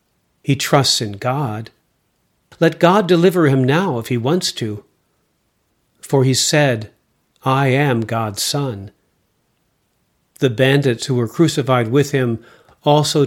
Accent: American